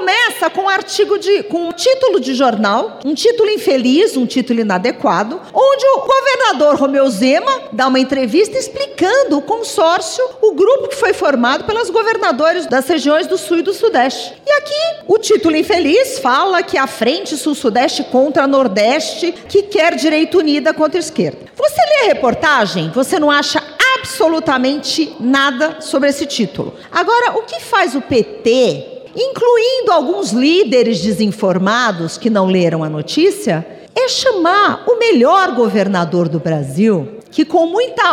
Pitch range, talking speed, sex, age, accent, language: 255-410 Hz, 150 wpm, female, 40-59, Brazilian, Portuguese